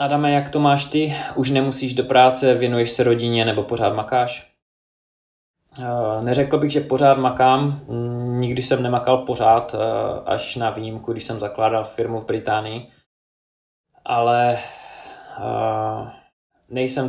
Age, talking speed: 20-39, 125 wpm